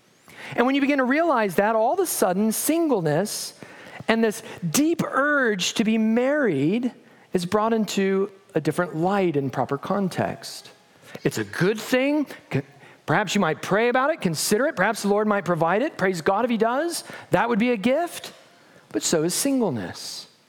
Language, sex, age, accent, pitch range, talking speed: English, male, 40-59, American, 155-225 Hz, 175 wpm